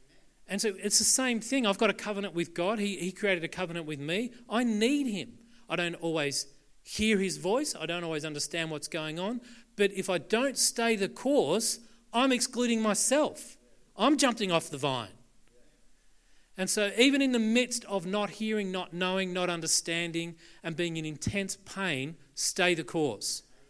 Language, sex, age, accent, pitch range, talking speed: English, male, 40-59, Australian, 145-205 Hz, 180 wpm